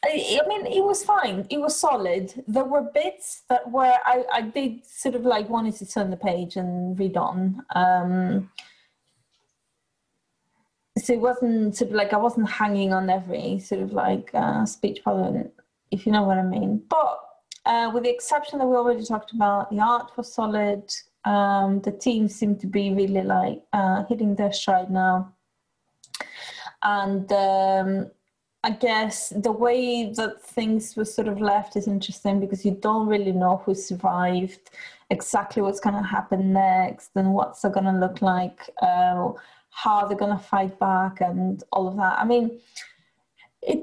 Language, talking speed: English, 175 wpm